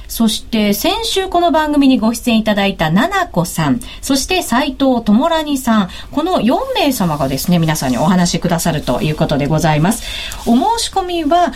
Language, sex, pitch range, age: Japanese, female, 180-280 Hz, 40-59